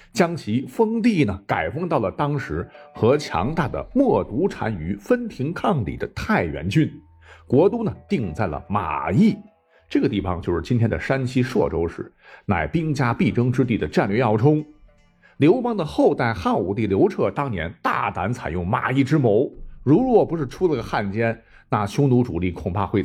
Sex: male